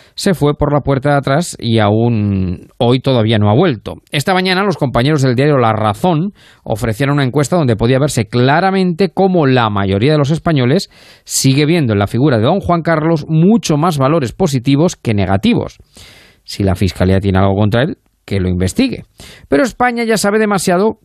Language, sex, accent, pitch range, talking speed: Spanish, male, Spanish, 110-155 Hz, 185 wpm